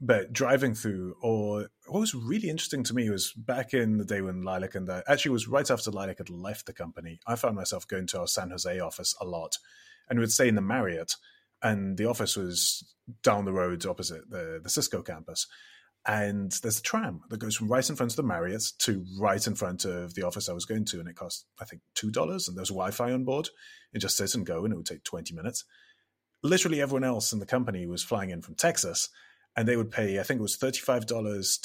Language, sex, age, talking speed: English, male, 30-49, 235 wpm